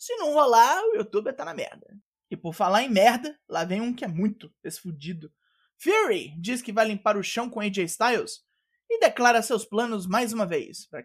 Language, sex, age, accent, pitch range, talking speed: Portuguese, male, 20-39, Brazilian, 175-250 Hz, 205 wpm